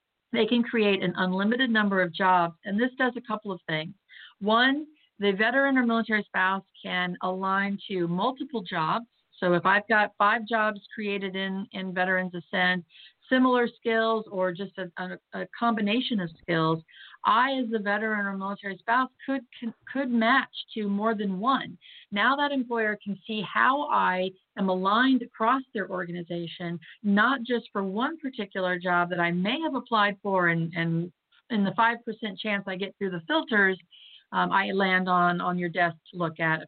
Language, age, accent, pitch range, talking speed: English, 50-69, American, 185-235 Hz, 175 wpm